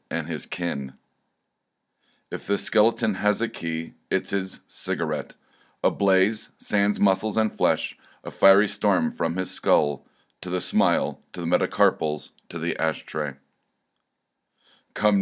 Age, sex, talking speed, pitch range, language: 40-59, male, 135 wpm, 85-100 Hz, English